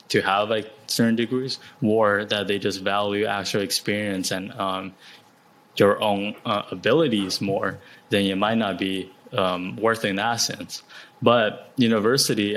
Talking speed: 150 wpm